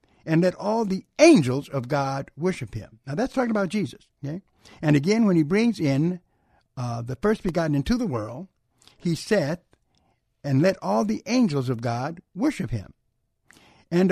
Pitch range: 140-200 Hz